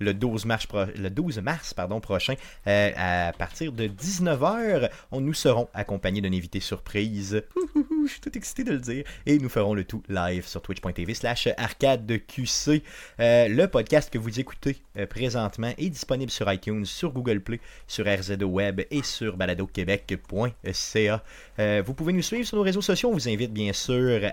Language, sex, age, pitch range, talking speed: French, male, 30-49, 100-130 Hz, 170 wpm